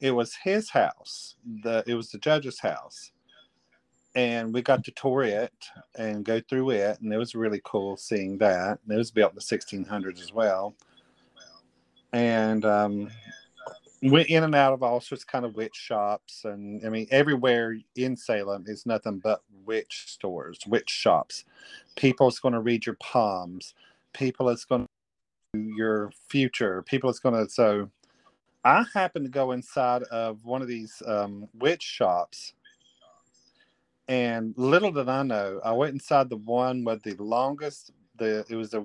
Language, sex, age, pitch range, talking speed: English, male, 40-59, 110-130 Hz, 170 wpm